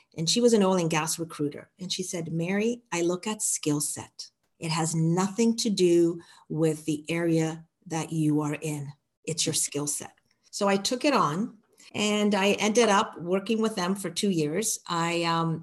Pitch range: 170-235 Hz